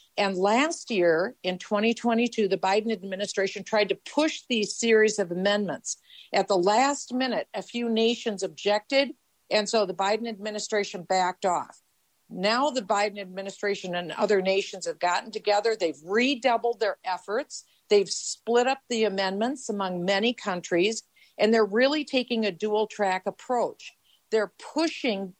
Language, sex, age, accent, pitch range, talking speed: English, female, 50-69, American, 190-240 Hz, 145 wpm